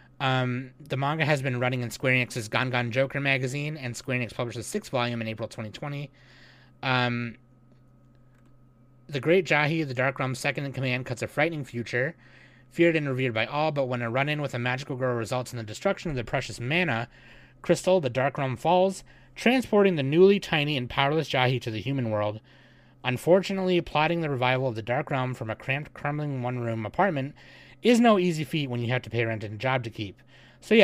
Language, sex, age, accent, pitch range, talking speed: English, male, 30-49, American, 120-140 Hz, 200 wpm